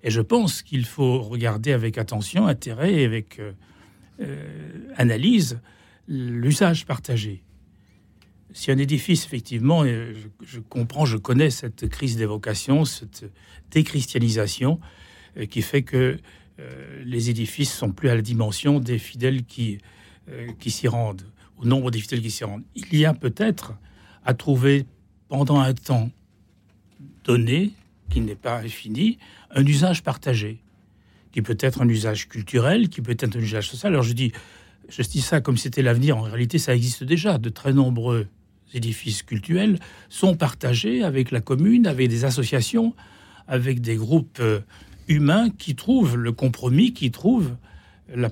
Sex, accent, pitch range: male, French, 110-145 Hz